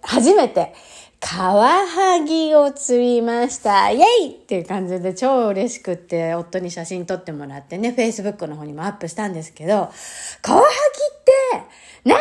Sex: female